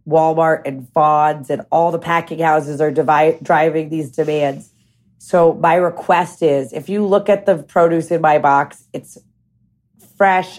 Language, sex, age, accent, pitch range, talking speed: English, female, 30-49, American, 160-195 Hz, 160 wpm